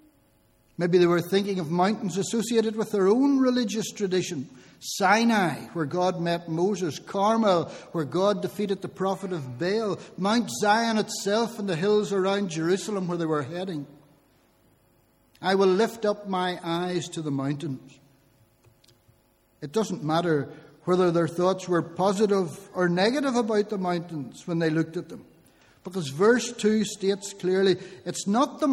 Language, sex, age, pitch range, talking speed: English, male, 60-79, 150-205 Hz, 150 wpm